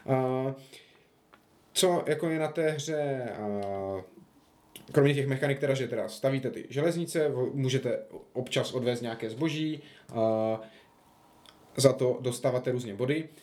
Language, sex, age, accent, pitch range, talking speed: Czech, male, 20-39, native, 115-140 Hz, 130 wpm